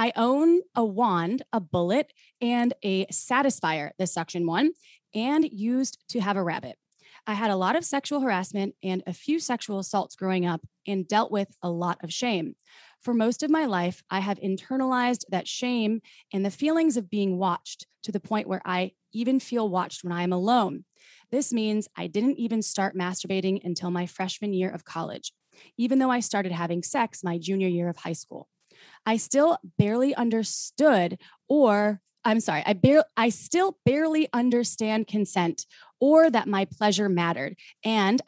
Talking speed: 175 wpm